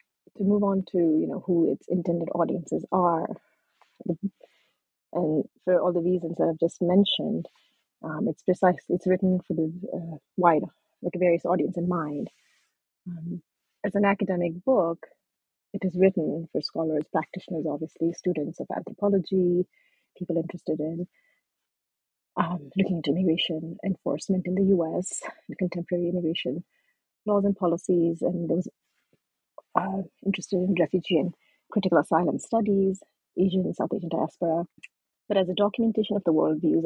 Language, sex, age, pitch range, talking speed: English, female, 30-49, 170-195 Hz, 145 wpm